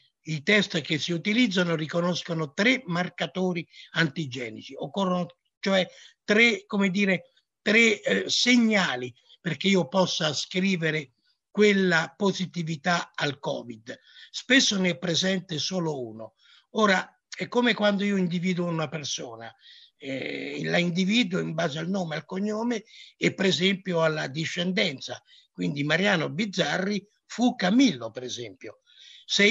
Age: 60-79